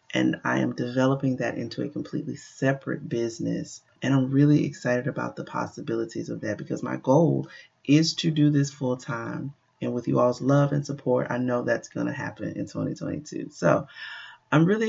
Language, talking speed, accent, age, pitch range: English, 185 wpm, American, 30-49, 130-165 Hz